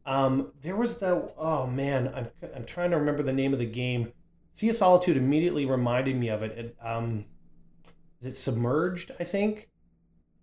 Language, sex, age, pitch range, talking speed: English, male, 30-49, 120-150 Hz, 185 wpm